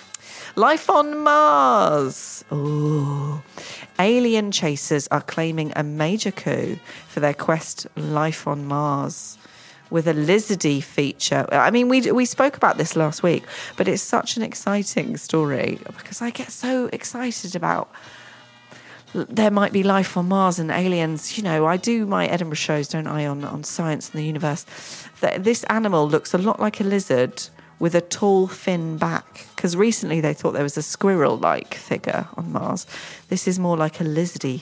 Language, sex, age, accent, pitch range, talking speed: English, female, 30-49, British, 155-210 Hz, 165 wpm